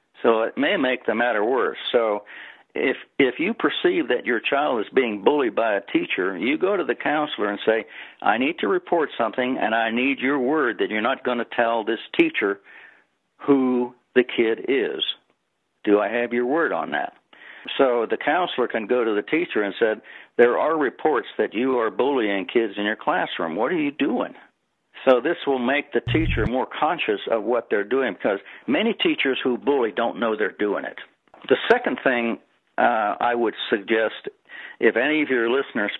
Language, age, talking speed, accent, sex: English, 60-79, 195 wpm, American, male